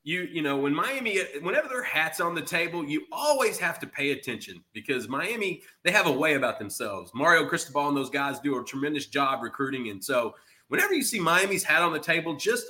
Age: 30-49